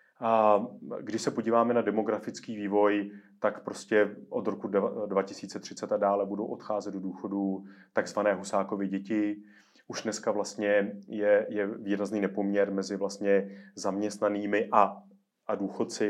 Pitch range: 100-105 Hz